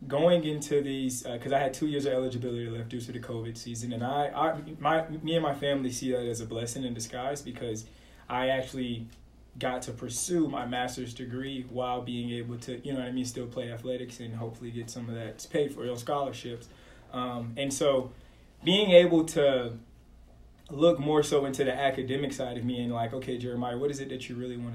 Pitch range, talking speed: 120-140 Hz, 215 wpm